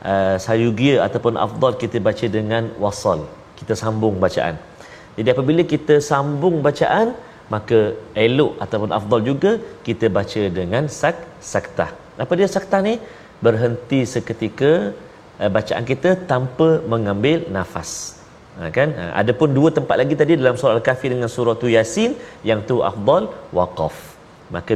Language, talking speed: Malayalam, 140 wpm